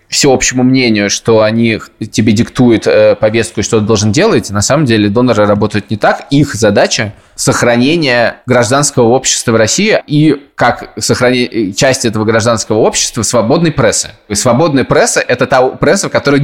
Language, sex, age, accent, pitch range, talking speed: Russian, male, 20-39, native, 105-130 Hz, 165 wpm